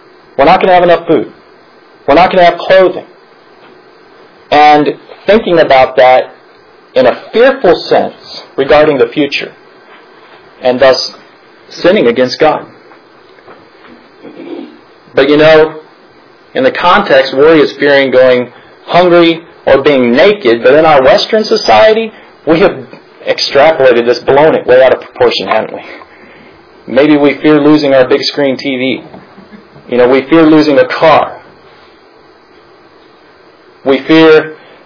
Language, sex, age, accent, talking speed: English, male, 40-59, American, 135 wpm